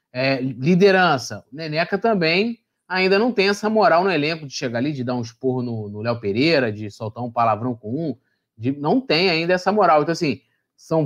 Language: Portuguese